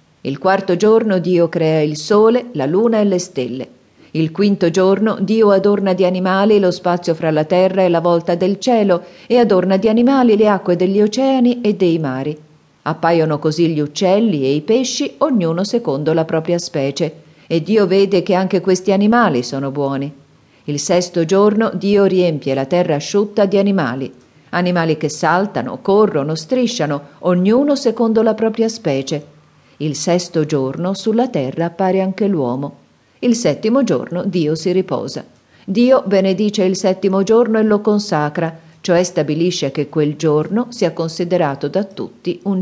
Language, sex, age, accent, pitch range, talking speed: Italian, female, 40-59, native, 150-195 Hz, 160 wpm